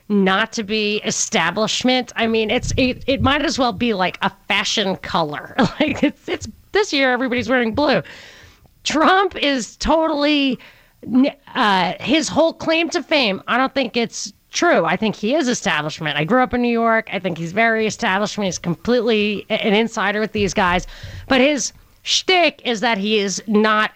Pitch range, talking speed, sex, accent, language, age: 210-275 Hz, 175 wpm, female, American, English, 30-49